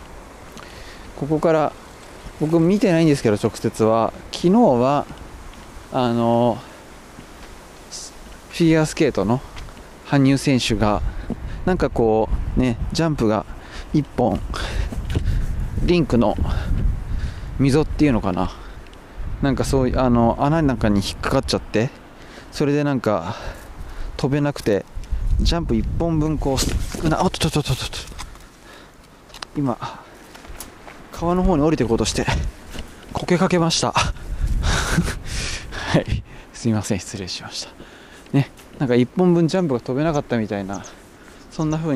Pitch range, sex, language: 95-145 Hz, male, Japanese